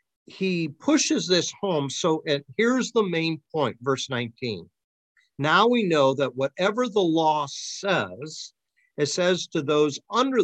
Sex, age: male, 50-69